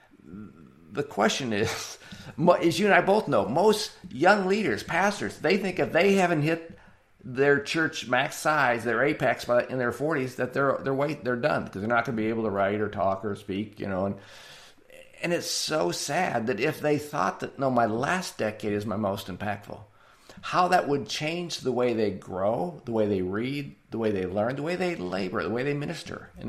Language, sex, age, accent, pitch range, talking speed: English, male, 50-69, American, 110-155 Hz, 210 wpm